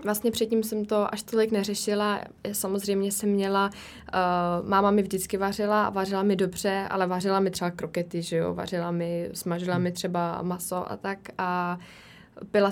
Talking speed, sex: 170 wpm, female